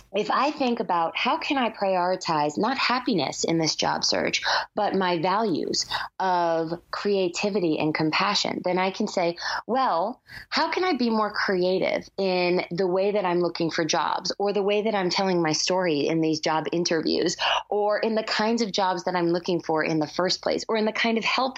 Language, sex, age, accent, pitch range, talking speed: English, female, 20-39, American, 170-230 Hz, 200 wpm